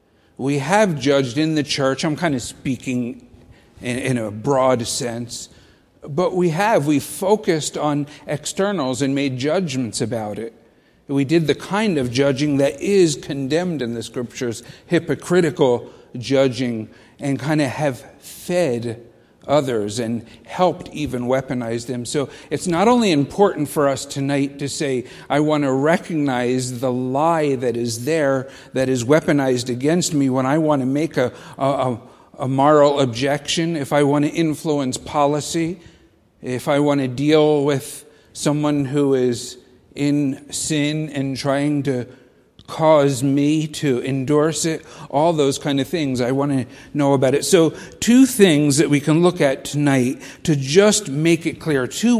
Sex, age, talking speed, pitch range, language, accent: male, 50-69, 155 wpm, 130-155 Hz, English, American